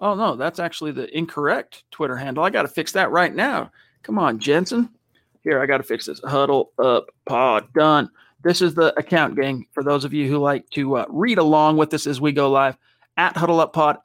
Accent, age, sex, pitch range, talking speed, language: American, 40-59, male, 140-170 Hz, 225 wpm, English